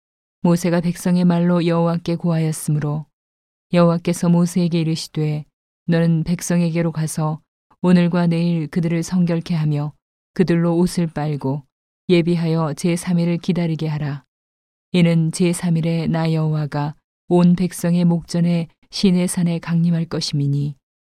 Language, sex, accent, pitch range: Korean, female, native, 150-175 Hz